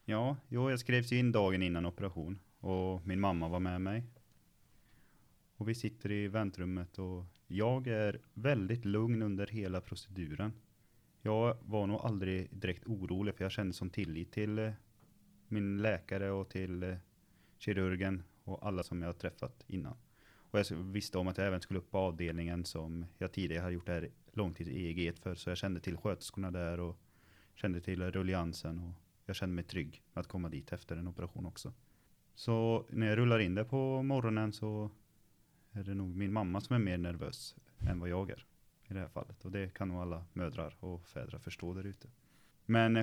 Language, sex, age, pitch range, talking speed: Swedish, male, 30-49, 90-110 Hz, 185 wpm